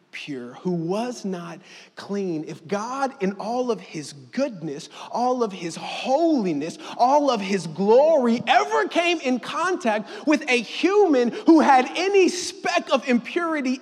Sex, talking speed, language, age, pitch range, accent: male, 145 wpm, English, 30-49, 240-330 Hz, American